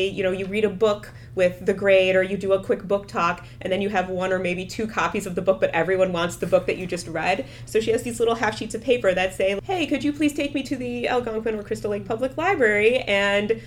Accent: American